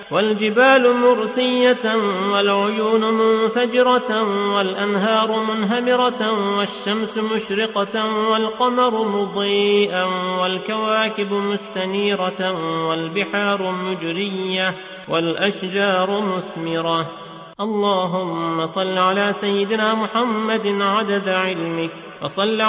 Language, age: Indonesian, 30-49